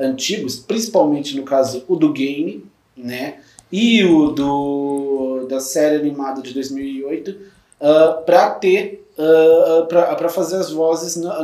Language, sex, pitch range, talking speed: Portuguese, male, 155-200 Hz, 130 wpm